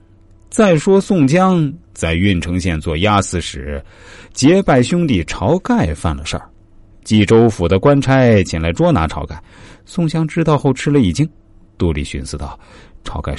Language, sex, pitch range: Chinese, male, 90-135 Hz